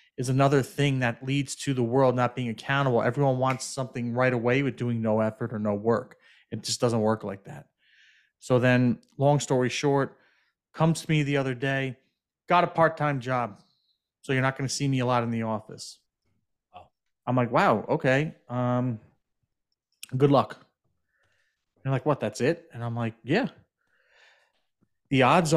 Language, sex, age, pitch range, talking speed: English, male, 30-49, 120-140 Hz, 175 wpm